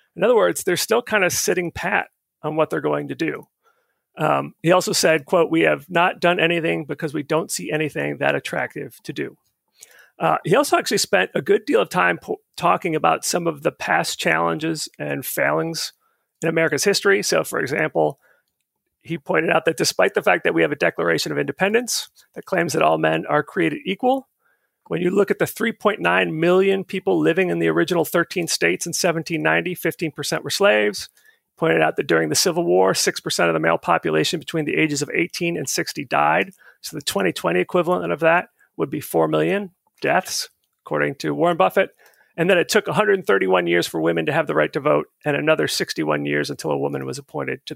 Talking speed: 200 wpm